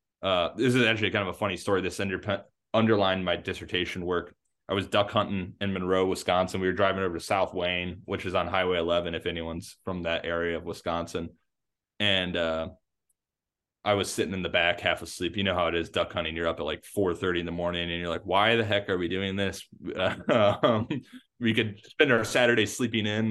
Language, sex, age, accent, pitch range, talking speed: English, male, 20-39, American, 90-110 Hz, 220 wpm